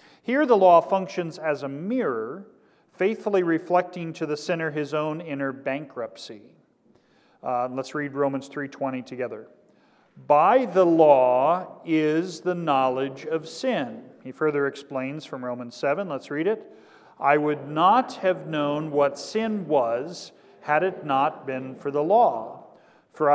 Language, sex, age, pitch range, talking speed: English, male, 40-59, 135-175 Hz, 140 wpm